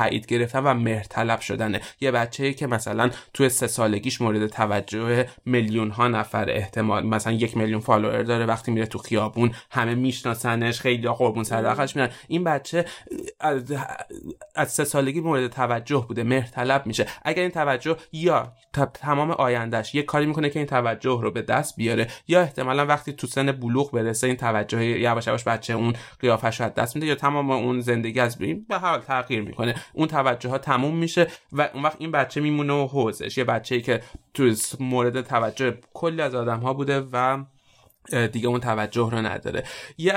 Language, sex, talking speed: Persian, male, 175 wpm